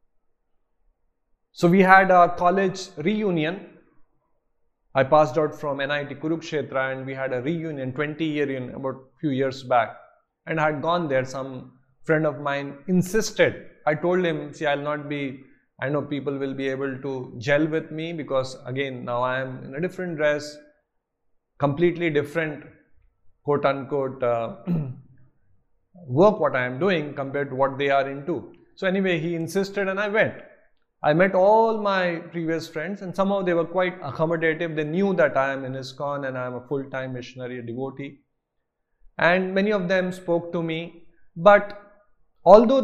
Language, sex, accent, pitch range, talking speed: English, male, Indian, 135-180 Hz, 170 wpm